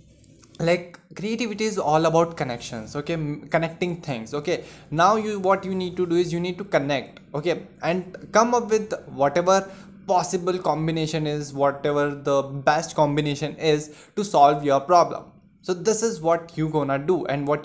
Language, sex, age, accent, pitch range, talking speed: Hindi, male, 20-39, native, 145-180 Hz, 170 wpm